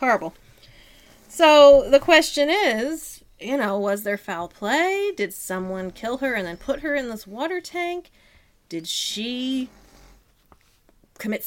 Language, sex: English, female